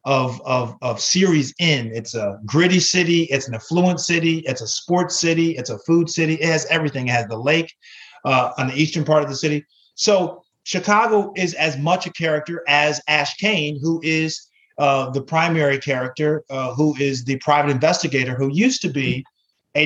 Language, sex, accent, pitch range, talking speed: English, male, American, 140-170 Hz, 190 wpm